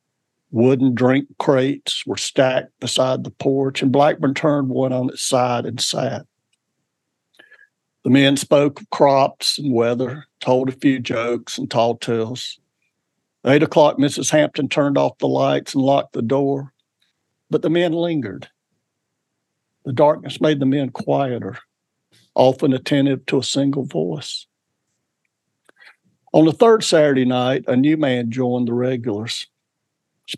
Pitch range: 120-145 Hz